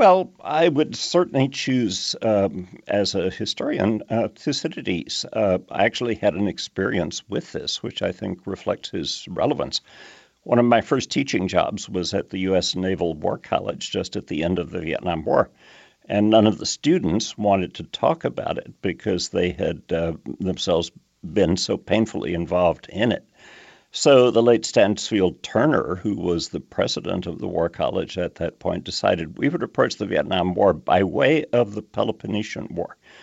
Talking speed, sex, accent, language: 175 wpm, male, American, English